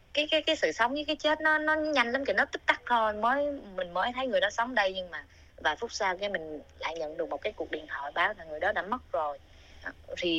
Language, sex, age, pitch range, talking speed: Vietnamese, female, 20-39, 165-255 Hz, 275 wpm